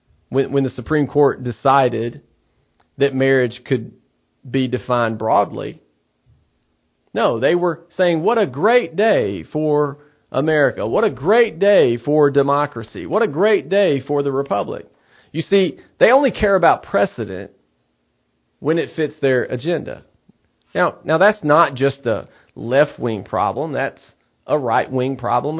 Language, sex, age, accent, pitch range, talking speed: English, male, 40-59, American, 125-175 Hz, 135 wpm